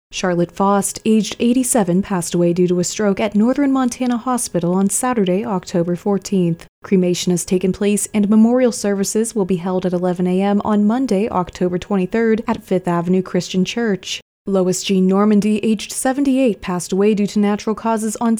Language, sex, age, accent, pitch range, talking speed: English, female, 20-39, American, 180-220 Hz, 175 wpm